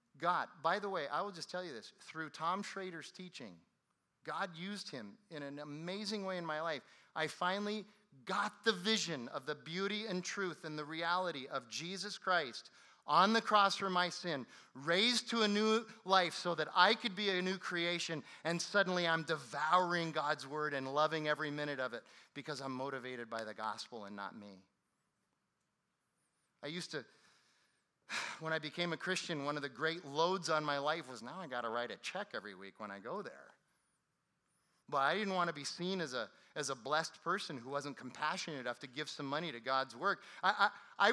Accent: American